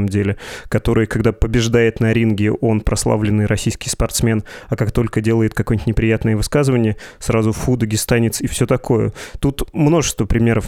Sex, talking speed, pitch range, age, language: male, 150 wpm, 110-135 Hz, 20-39, Russian